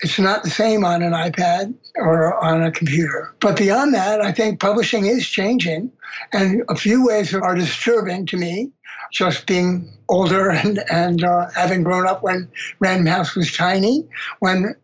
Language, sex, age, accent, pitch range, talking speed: English, male, 60-79, American, 175-210 Hz, 170 wpm